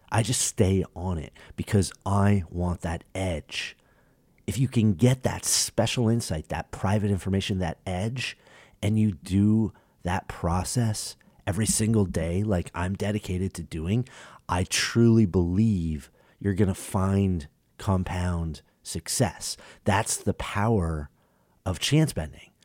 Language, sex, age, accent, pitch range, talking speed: English, male, 30-49, American, 85-110 Hz, 130 wpm